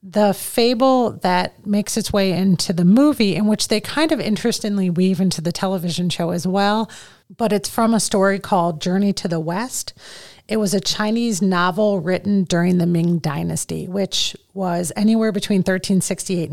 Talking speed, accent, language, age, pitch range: 170 wpm, American, English, 30-49, 180-210 Hz